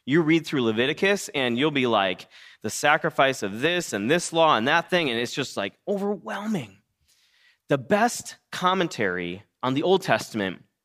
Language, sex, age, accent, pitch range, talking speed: English, male, 30-49, American, 125-190 Hz, 165 wpm